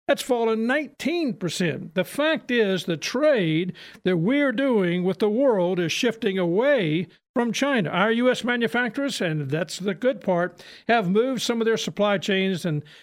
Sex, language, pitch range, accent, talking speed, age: male, English, 180-250 Hz, American, 165 wpm, 50-69